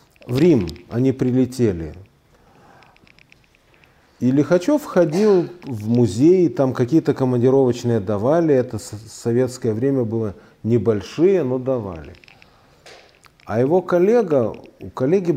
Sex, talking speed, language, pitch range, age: male, 100 wpm, Russian, 115-150 Hz, 40-59